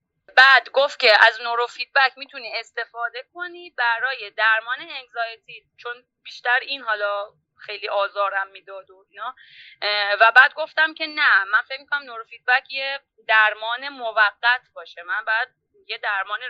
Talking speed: 145 wpm